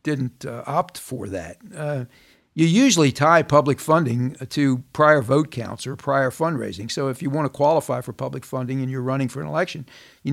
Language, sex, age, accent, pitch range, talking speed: English, male, 60-79, American, 125-150 Hz, 200 wpm